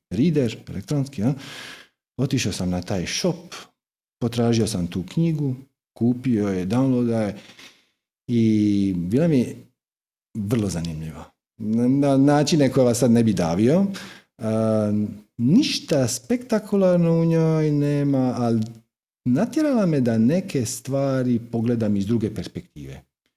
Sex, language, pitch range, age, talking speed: male, Croatian, 110-165 Hz, 40-59, 120 wpm